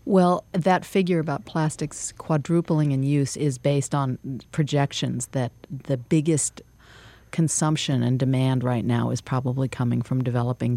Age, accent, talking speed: 40-59, American, 140 wpm